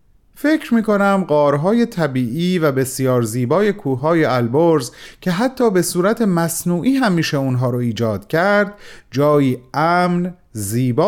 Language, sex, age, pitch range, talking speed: Persian, male, 30-49, 115-165 Hz, 120 wpm